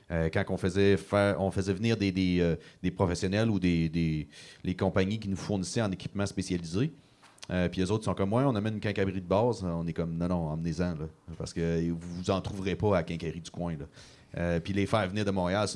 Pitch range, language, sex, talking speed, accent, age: 90-115 Hz, French, male, 250 wpm, Canadian, 30-49